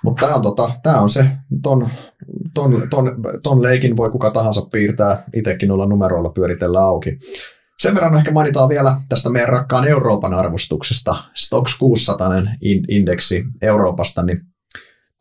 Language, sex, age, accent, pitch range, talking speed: Finnish, male, 30-49, native, 90-125 Hz, 135 wpm